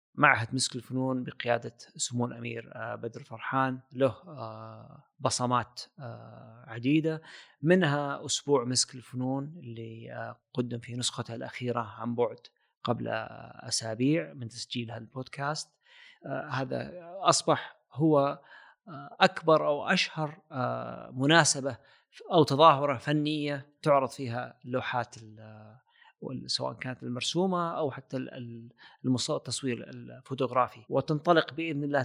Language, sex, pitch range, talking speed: Arabic, male, 120-140 Hz, 95 wpm